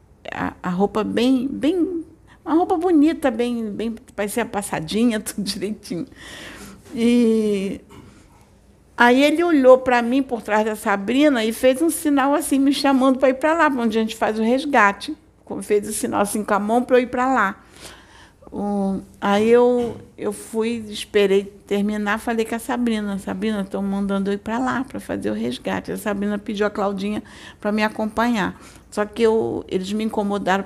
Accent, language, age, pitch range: Brazilian, Portuguese, 60-79, 195-240 Hz